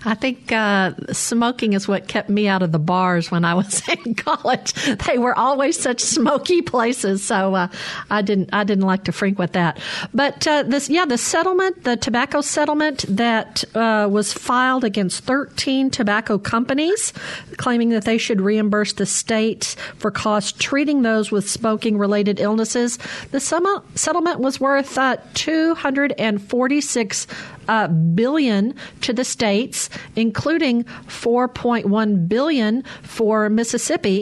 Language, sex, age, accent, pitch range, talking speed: English, female, 50-69, American, 200-250 Hz, 155 wpm